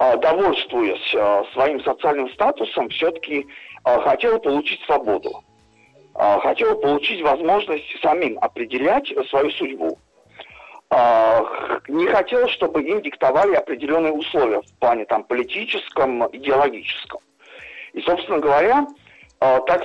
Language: Russian